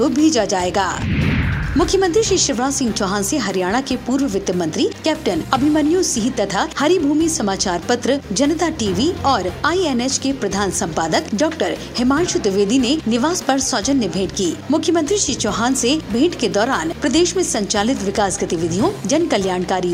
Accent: native